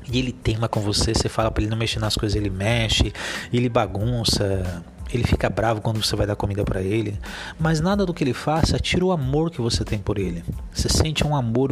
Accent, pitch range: Brazilian, 105-145 Hz